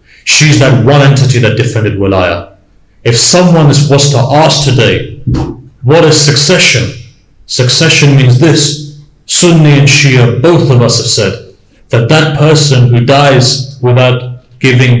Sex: male